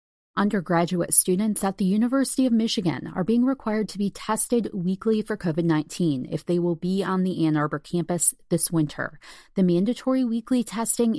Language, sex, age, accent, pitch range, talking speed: English, female, 30-49, American, 165-205 Hz, 170 wpm